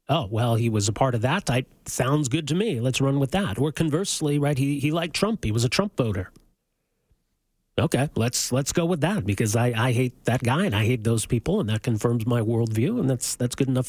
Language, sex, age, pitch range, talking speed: English, male, 40-59, 120-160 Hz, 240 wpm